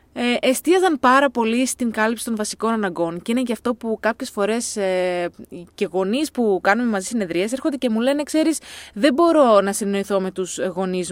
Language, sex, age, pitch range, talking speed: Greek, female, 20-39, 190-290 Hz, 190 wpm